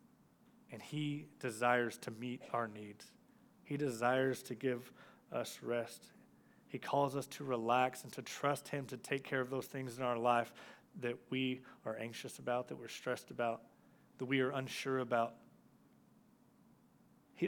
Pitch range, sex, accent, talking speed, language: 125-160 Hz, male, American, 160 wpm, English